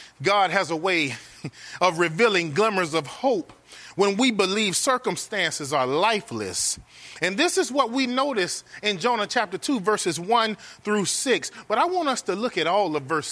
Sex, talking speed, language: male, 175 wpm, English